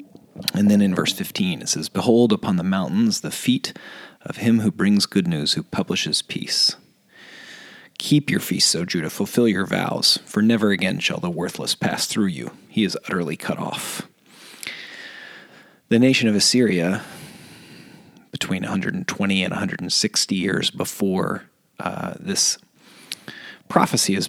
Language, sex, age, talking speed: English, male, 30-49, 145 wpm